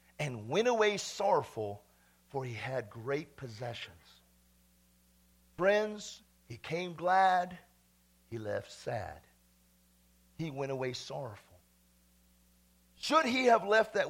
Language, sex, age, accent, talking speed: English, male, 50-69, American, 105 wpm